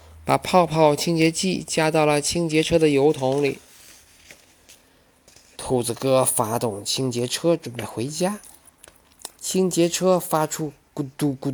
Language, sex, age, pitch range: Chinese, male, 20-39, 125-160 Hz